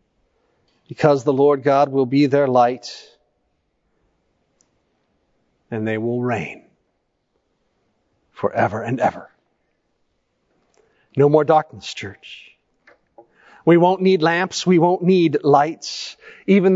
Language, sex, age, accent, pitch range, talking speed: English, male, 40-59, American, 130-180 Hz, 100 wpm